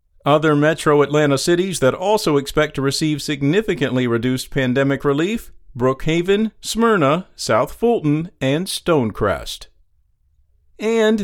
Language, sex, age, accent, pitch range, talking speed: English, male, 50-69, American, 135-185 Hz, 105 wpm